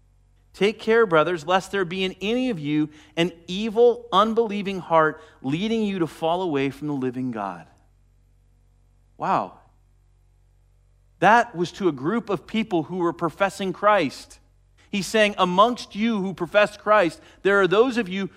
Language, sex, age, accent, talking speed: English, male, 40-59, American, 155 wpm